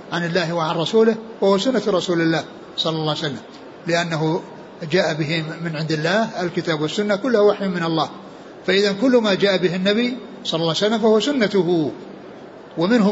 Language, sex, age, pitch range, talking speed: Arabic, male, 60-79, 170-210 Hz, 170 wpm